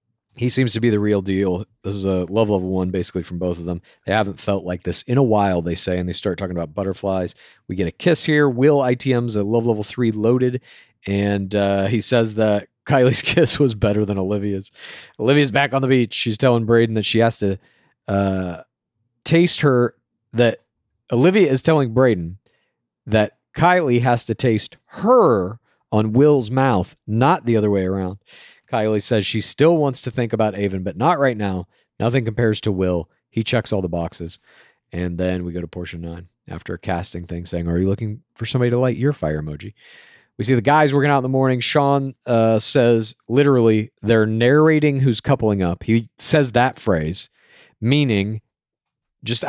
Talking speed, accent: 195 wpm, American